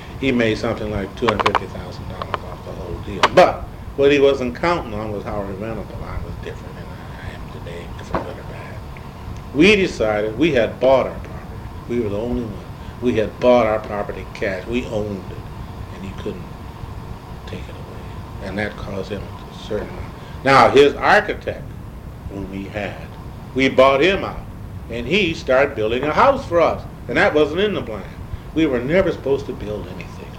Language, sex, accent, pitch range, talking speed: English, male, American, 100-140 Hz, 180 wpm